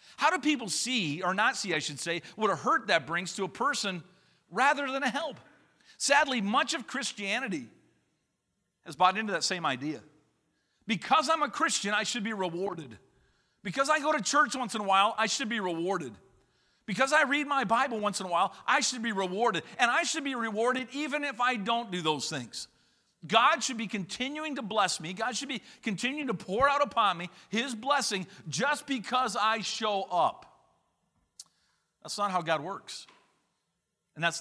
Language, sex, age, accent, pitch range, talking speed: English, male, 50-69, American, 175-255 Hz, 190 wpm